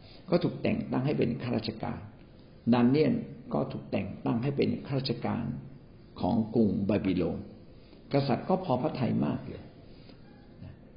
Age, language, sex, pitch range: 60-79, Thai, male, 110-145 Hz